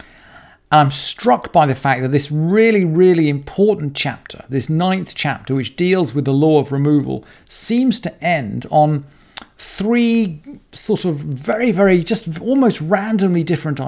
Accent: British